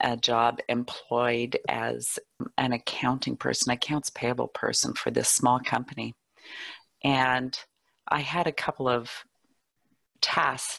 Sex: female